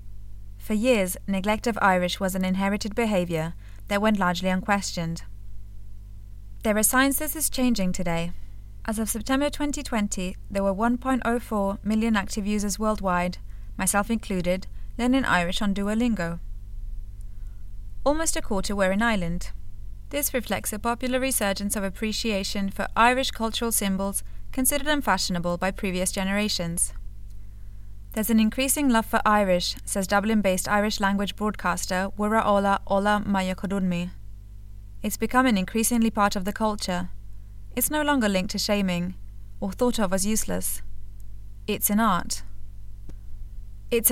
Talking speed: 130 wpm